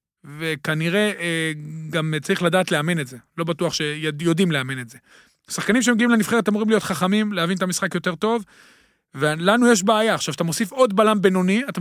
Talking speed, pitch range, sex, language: 175 wpm, 175-220 Hz, male, Hebrew